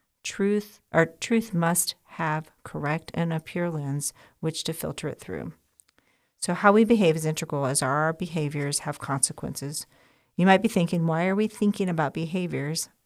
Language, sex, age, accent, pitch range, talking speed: English, female, 40-59, American, 150-180 Hz, 165 wpm